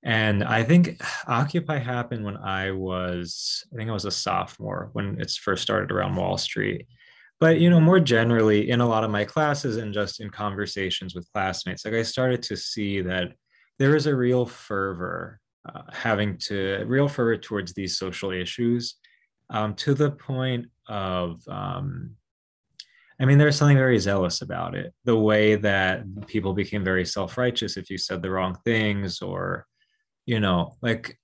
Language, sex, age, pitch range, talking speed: English, male, 20-39, 95-125 Hz, 170 wpm